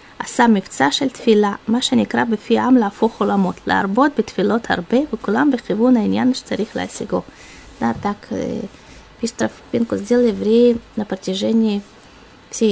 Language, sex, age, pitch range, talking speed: Russian, female, 20-39, 205-250 Hz, 95 wpm